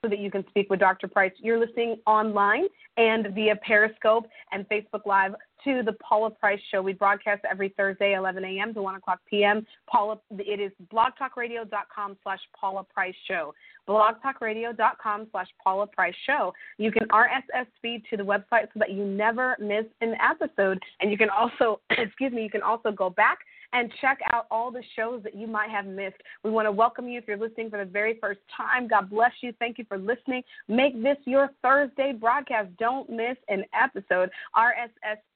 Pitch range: 205-250 Hz